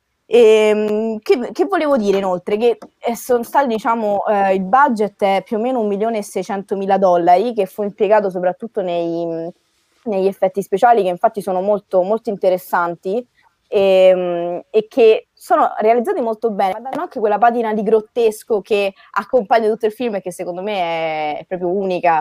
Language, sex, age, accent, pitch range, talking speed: Italian, female, 20-39, native, 175-215 Hz, 155 wpm